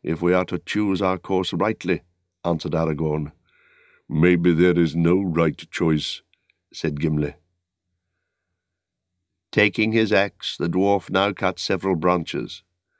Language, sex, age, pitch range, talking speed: English, male, 60-79, 90-115 Hz, 125 wpm